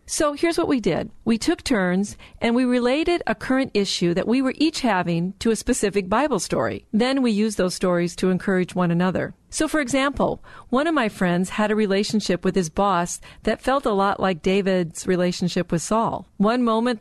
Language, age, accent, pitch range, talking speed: English, 40-59, American, 185-230 Hz, 200 wpm